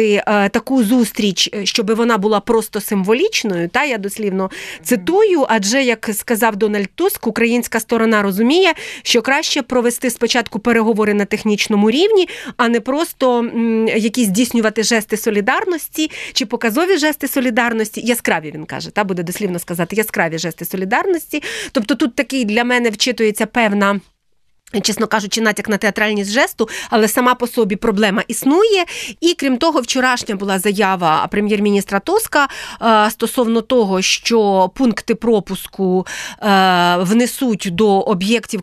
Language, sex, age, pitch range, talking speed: Ukrainian, female, 30-49, 210-255 Hz, 130 wpm